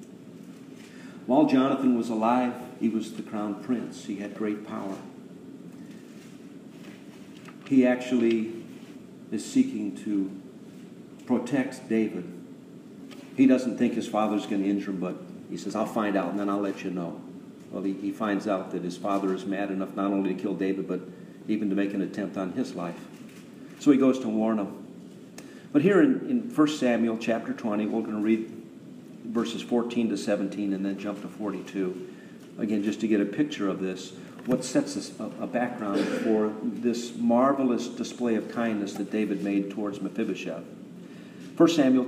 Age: 50-69